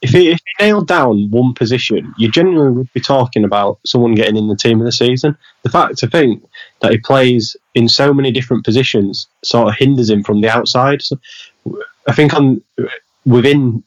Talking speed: 200 wpm